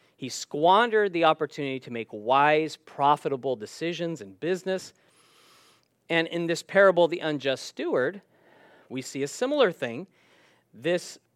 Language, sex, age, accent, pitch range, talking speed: English, male, 40-59, American, 130-180 Hz, 125 wpm